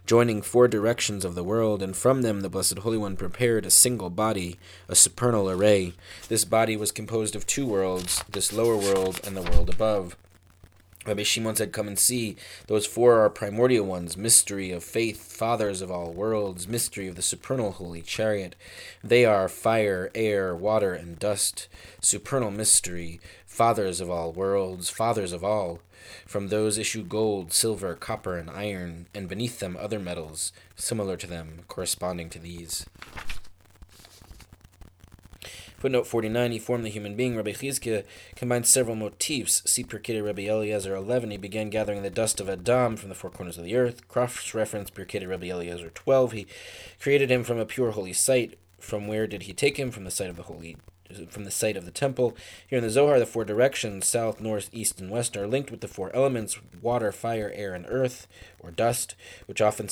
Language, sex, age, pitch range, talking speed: English, male, 20-39, 90-115 Hz, 185 wpm